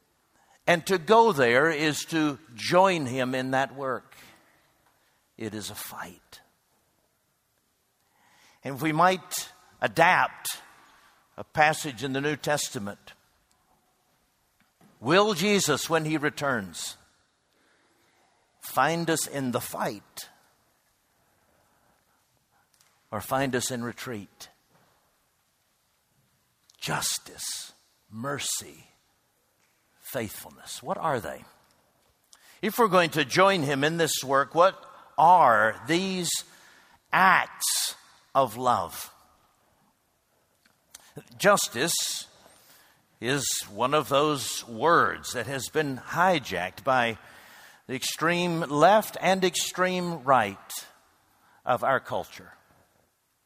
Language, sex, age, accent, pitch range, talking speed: English, male, 60-79, American, 130-170 Hz, 90 wpm